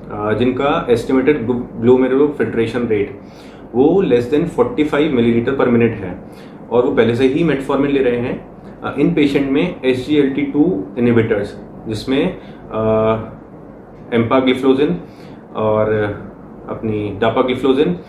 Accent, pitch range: native, 115-145 Hz